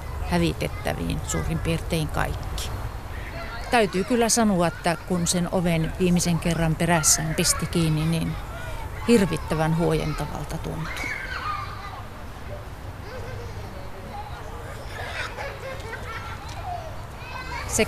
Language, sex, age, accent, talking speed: Finnish, female, 40-59, native, 70 wpm